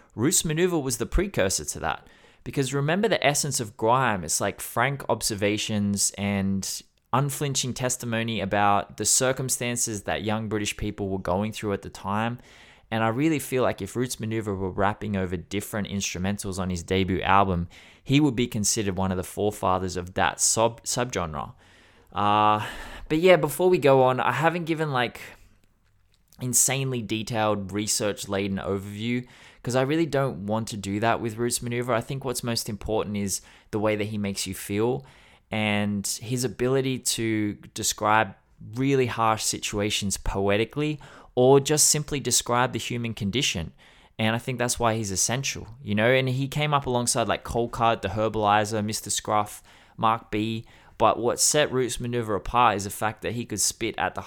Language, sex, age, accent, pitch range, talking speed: English, male, 20-39, Australian, 100-125 Hz, 170 wpm